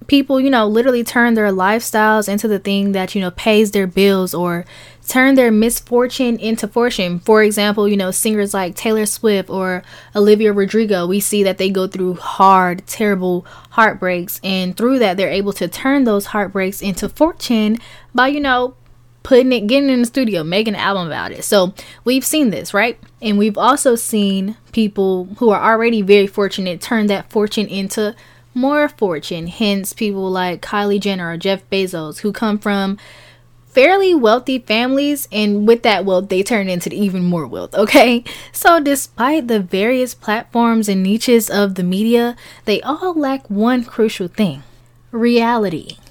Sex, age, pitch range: female, 10-29, 195-240 Hz